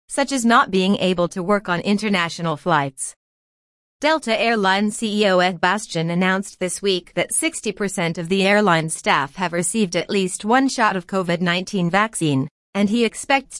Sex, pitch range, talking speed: female, 175-215 Hz, 165 wpm